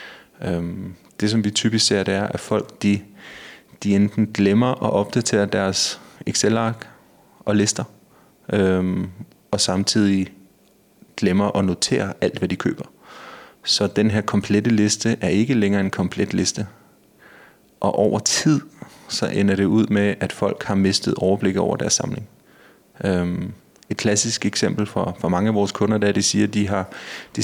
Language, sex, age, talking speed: Danish, male, 30-49, 165 wpm